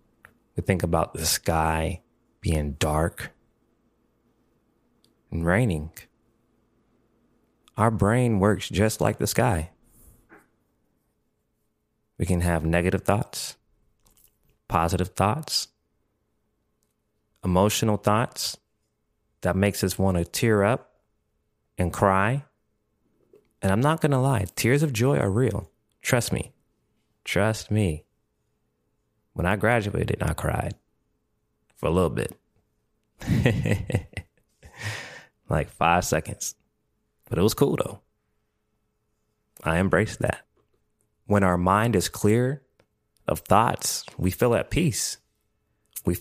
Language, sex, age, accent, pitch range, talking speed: English, male, 30-49, American, 90-115 Hz, 105 wpm